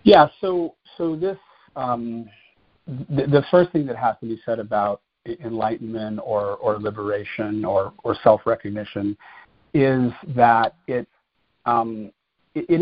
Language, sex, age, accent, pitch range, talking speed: English, male, 50-69, American, 110-135 Hz, 130 wpm